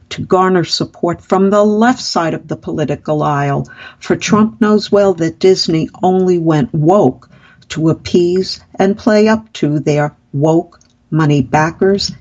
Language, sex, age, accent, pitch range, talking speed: English, female, 60-79, American, 155-200 Hz, 145 wpm